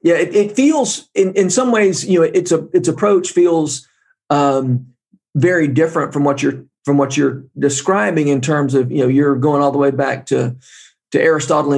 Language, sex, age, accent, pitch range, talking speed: English, male, 40-59, American, 135-175 Hz, 200 wpm